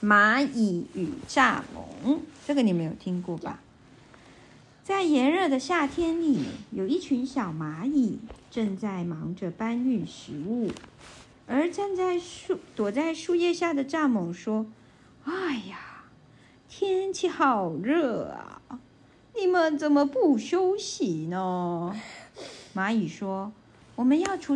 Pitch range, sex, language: 210-310 Hz, female, Chinese